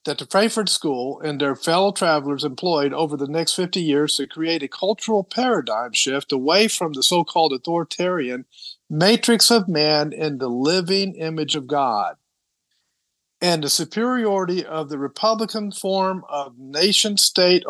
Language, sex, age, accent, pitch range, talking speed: English, male, 50-69, American, 150-220 Hz, 145 wpm